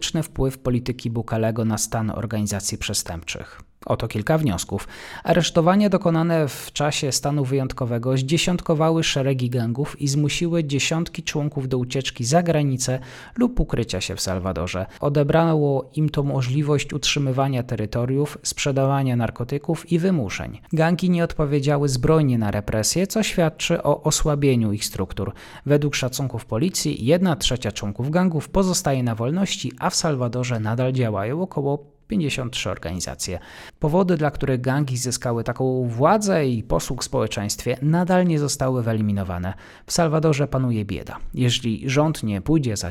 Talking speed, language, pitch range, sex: 135 wpm, Polish, 110-160 Hz, male